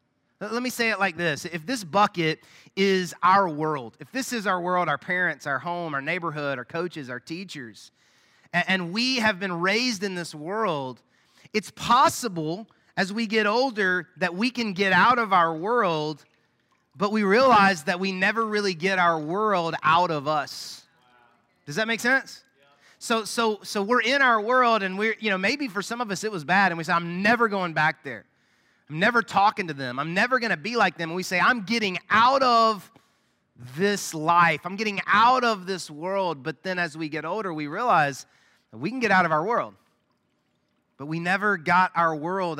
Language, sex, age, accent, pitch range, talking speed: English, male, 30-49, American, 165-225 Hz, 200 wpm